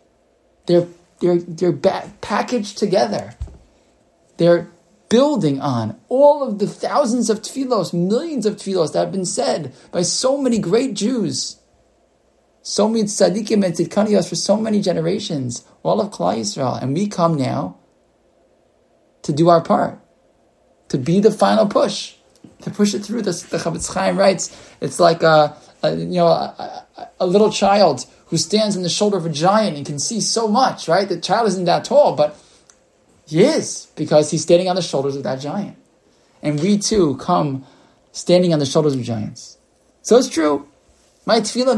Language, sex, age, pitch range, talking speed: English, male, 20-39, 165-215 Hz, 170 wpm